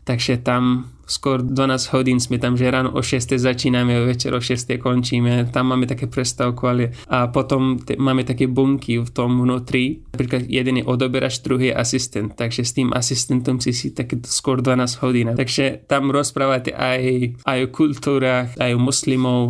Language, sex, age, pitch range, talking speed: Slovak, male, 20-39, 125-135 Hz, 180 wpm